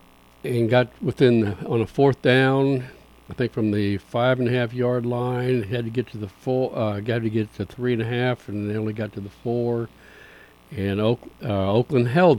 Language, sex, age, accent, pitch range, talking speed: English, male, 60-79, American, 100-125 Hz, 205 wpm